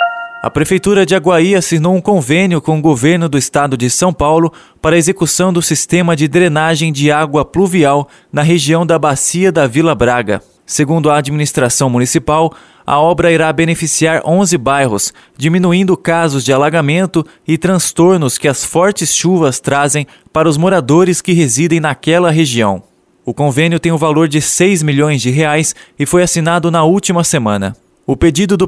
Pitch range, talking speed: 150-175 Hz, 165 wpm